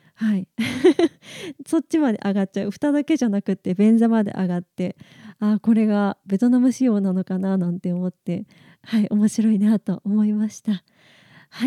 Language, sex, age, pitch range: Japanese, female, 20-39, 190-260 Hz